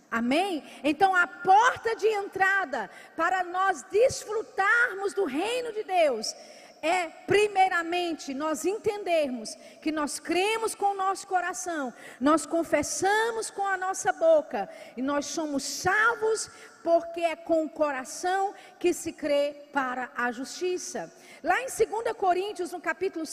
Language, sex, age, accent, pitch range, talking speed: Portuguese, female, 40-59, Brazilian, 295-370 Hz, 130 wpm